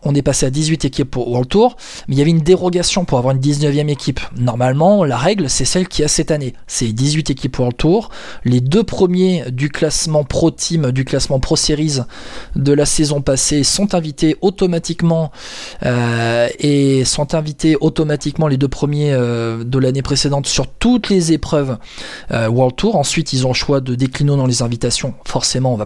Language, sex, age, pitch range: French, male, 20-39, 130-160 Hz